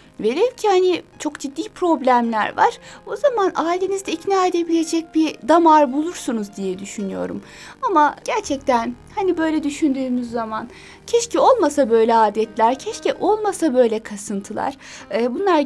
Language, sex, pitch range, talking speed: Turkish, female, 250-370 Hz, 125 wpm